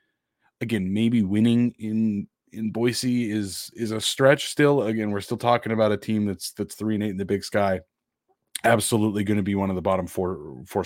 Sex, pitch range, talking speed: male, 100-120 Hz, 205 wpm